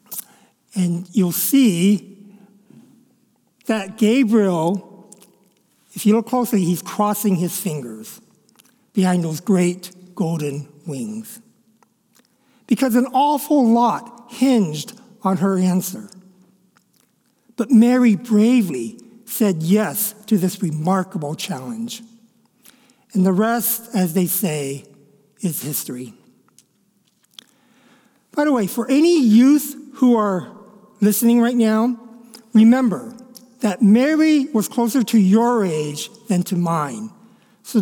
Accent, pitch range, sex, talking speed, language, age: American, 190-240 Hz, male, 105 wpm, English, 60-79